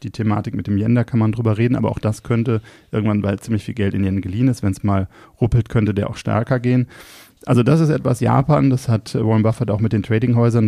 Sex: male